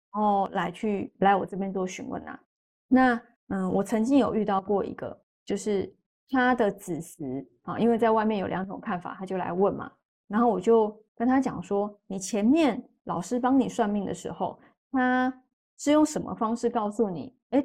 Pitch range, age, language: 195-250 Hz, 20-39, Chinese